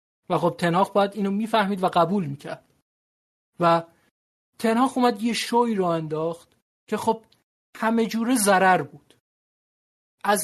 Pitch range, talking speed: 165-215 Hz, 130 wpm